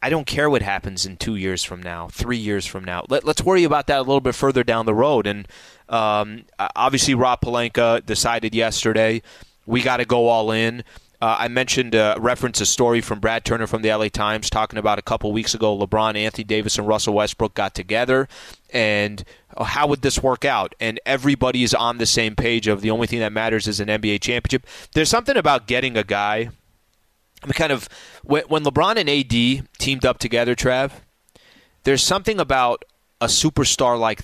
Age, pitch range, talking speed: 20-39, 105-130 Hz, 195 wpm